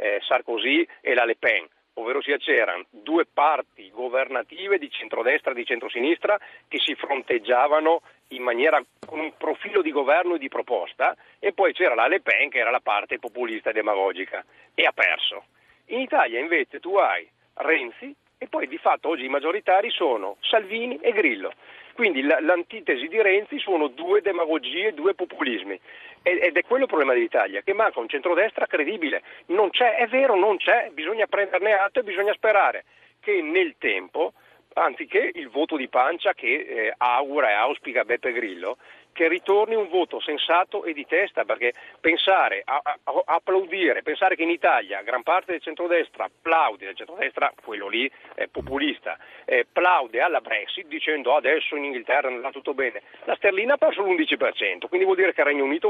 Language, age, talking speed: Italian, 50-69, 175 wpm